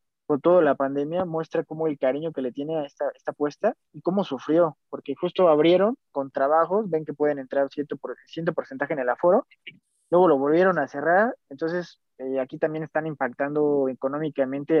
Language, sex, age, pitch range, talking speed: Spanish, male, 20-39, 140-180 Hz, 180 wpm